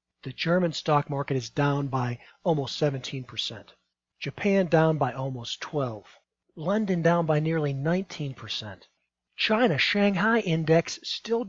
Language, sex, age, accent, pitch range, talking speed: English, male, 40-59, American, 145-180 Hz, 120 wpm